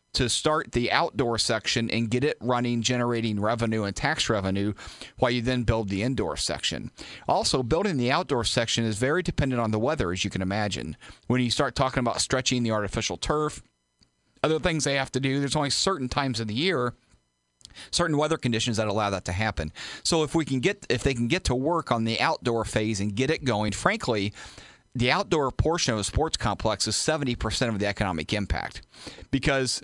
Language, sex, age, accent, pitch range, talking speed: English, male, 40-59, American, 105-135 Hz, 200 wpm